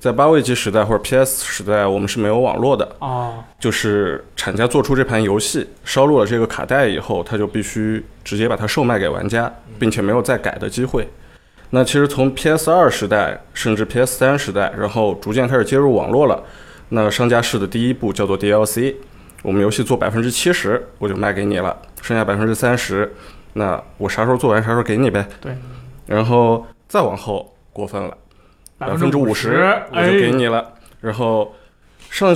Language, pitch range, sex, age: Chinese, 105-140 Hz, male, 20-39